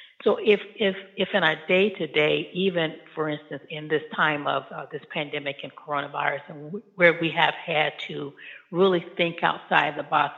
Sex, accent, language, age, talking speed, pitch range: female, American, English, 60-79, 190 wpm, 145-180 Hz